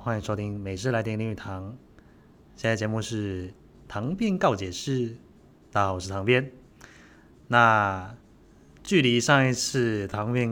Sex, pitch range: male, 100-120 Hz